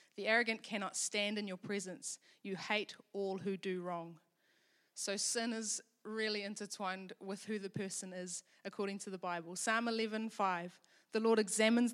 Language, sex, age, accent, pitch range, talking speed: English, female, 20-39, Australian, 185-220 Hz, 165 wpm